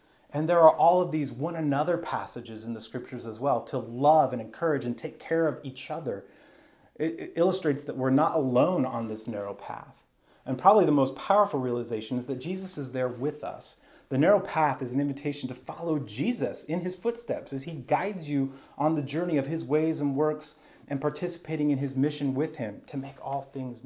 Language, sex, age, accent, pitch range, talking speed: English, male, 30-49, American, 125-155 Hz, 205 wpm